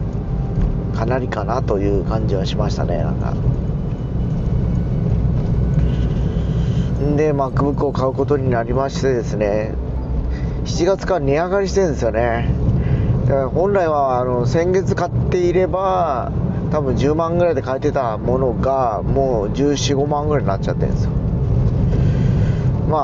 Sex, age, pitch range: male, 40-59, 130-175 Hz